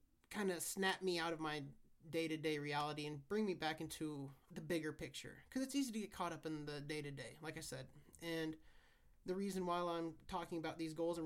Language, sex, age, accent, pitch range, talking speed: English, male, 30-49, American, 150-185 Hz, 235 wpm